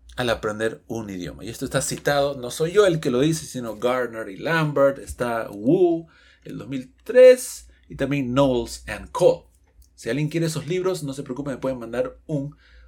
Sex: male